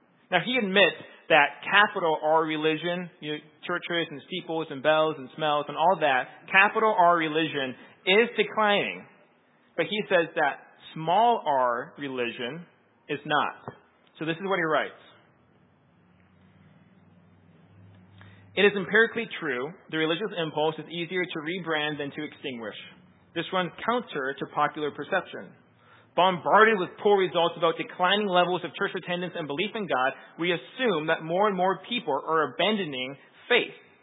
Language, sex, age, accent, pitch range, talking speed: English, male, 30-49, American, 150-195 Hz, 145 wpm